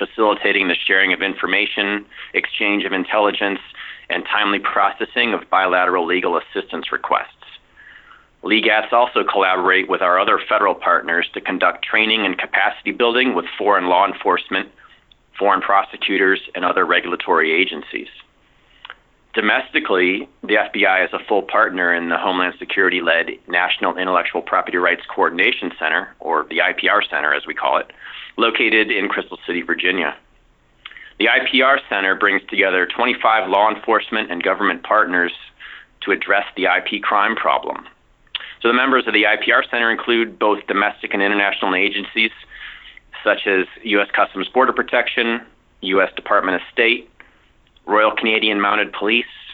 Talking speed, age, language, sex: 140 wpm, 30-49, English, male